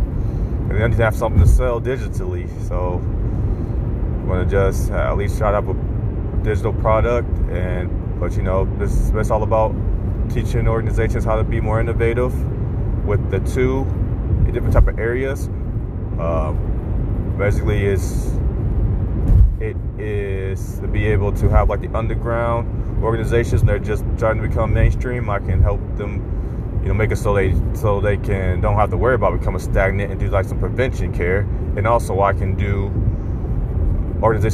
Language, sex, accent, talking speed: English, male, American, 165 wpm